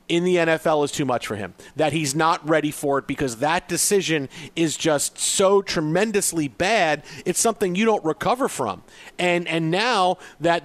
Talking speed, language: 180 wpm, English